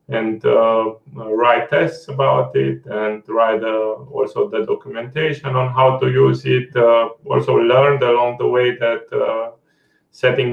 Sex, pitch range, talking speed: male, 110-130 Hz, 150 wpm